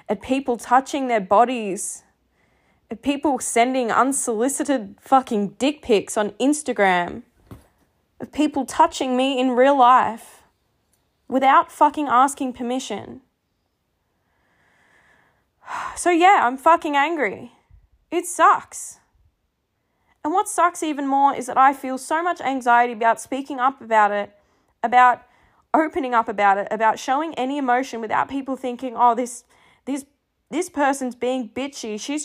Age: 10-29